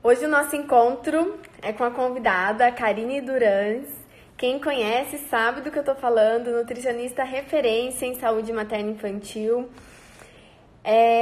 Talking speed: 140 wpm